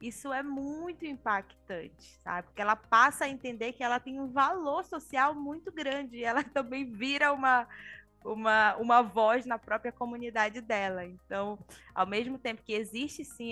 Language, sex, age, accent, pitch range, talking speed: Portuguese, female, 20-39, Brazilian, 220-285 Hz, 160 wpm